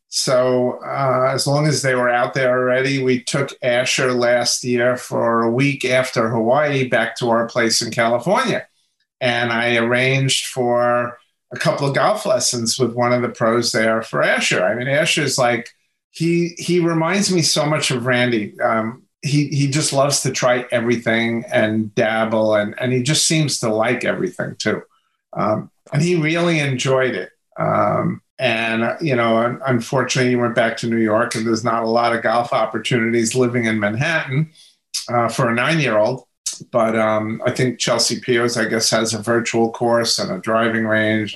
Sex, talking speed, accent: male, 180 wpm, American